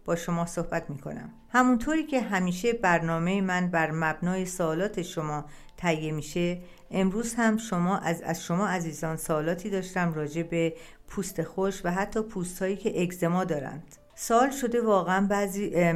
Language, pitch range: Persian, 165-200 Hz